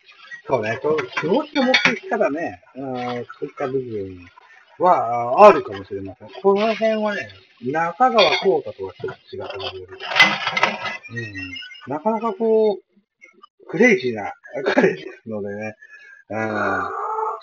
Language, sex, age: Japanese, male, 50-69